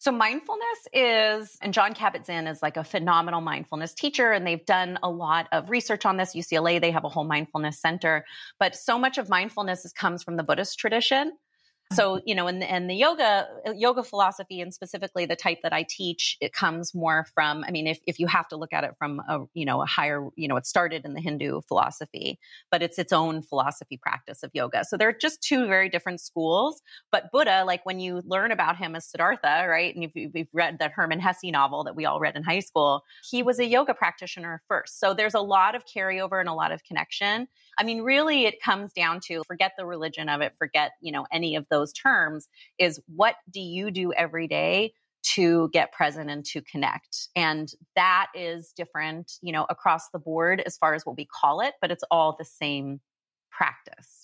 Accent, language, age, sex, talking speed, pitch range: American, English, 30-49, female, 220 wpm, 160-195 Hz